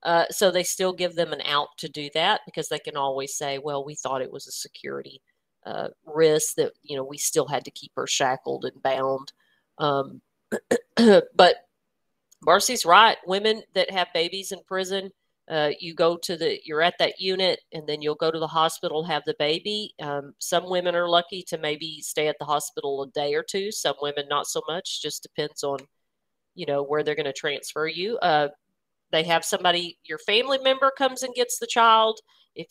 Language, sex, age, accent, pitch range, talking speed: English, female, 40-59, American, 150-200 Hz, 205 wpm